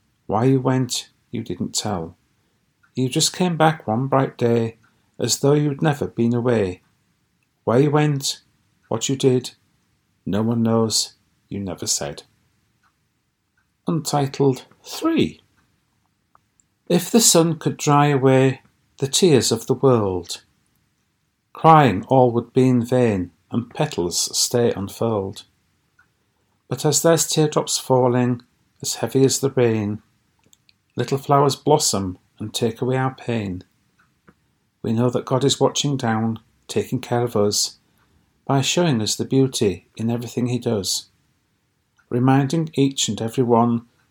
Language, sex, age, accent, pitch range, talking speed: English, male, 50-69, British, 110-135 Hz, 130 wpm